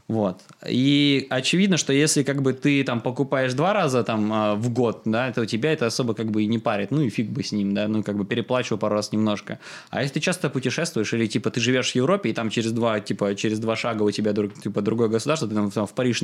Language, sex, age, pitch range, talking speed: Russian, male, 20-39, 110-135 Hz, 250 wpm